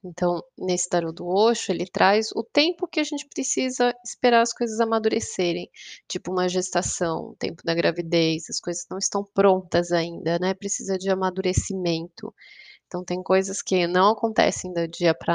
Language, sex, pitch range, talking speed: Portuguese, female, 180-225 Hz, 170 wpm